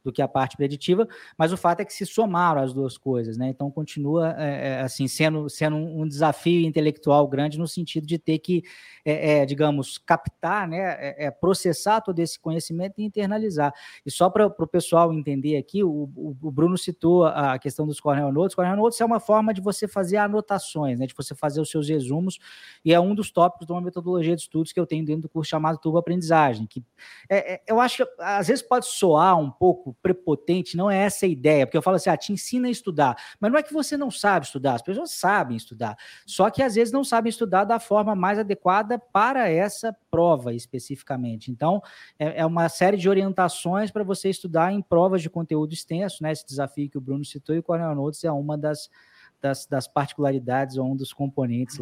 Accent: Brazilian